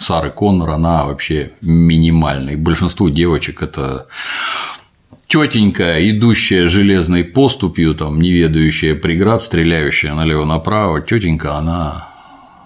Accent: native